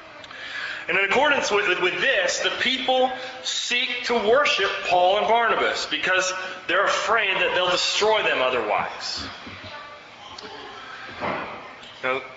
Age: 30-49